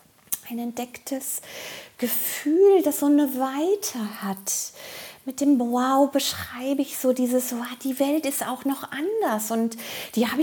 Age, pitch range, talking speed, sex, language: 30-49, 240-310 Hz, 140 wpm, female, German